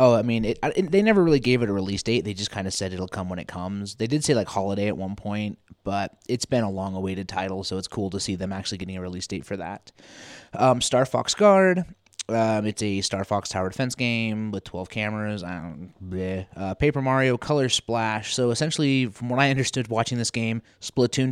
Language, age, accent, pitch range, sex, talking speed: English, 20-39, American, 100-130 Hz, male, 230 wpm